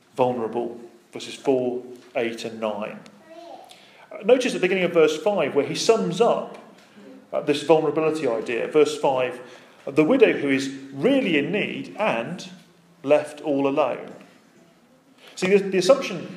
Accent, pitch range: British, 140-230 Hz